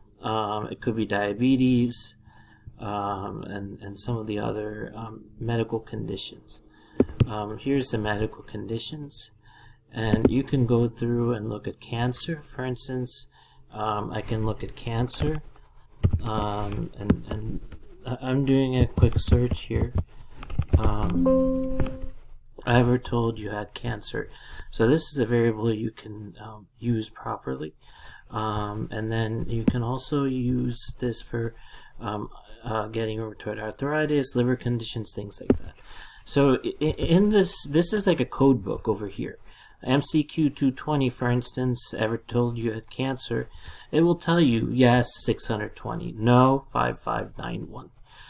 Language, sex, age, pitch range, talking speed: English, male, 30-49, 110-130 Hz, 135 wpm